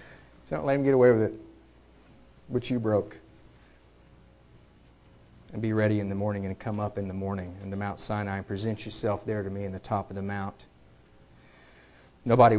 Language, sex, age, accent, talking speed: English, male, 40-59, American, 185 wpm